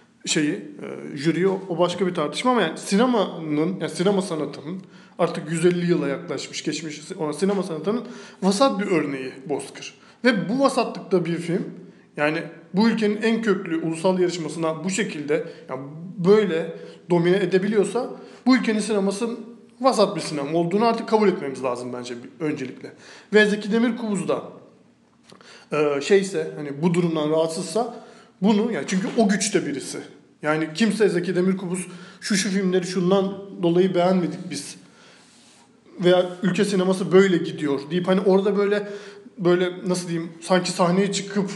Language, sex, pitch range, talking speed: Turkish, male, 170-215 Hz, 140 wpm